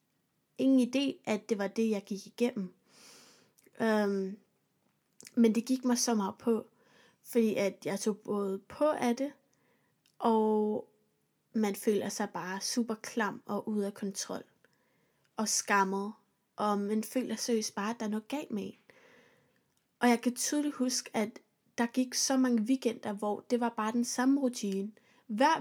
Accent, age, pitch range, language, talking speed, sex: native, 20-39, 215-245 Hz, Danish, 160 wpm, female